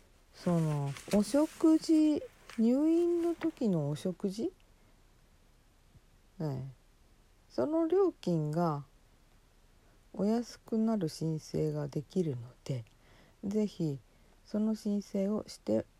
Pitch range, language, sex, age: 160-230 Hz, Japanese, female, 50-69